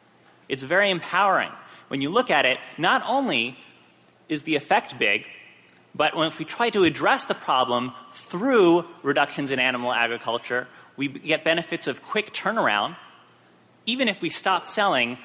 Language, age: English, 30-49